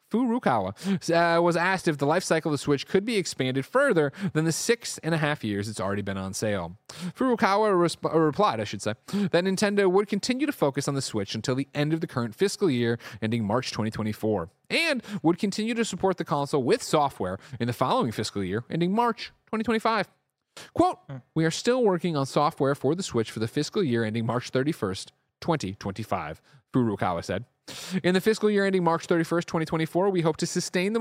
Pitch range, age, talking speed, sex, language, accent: 120-190 Hz, 30-49, 195 wpm, male, English, American